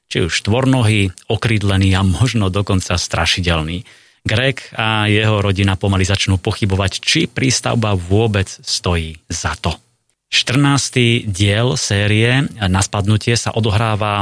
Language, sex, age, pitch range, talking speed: Slovak, male, 30-49, 95-115 Hz, 120 wpm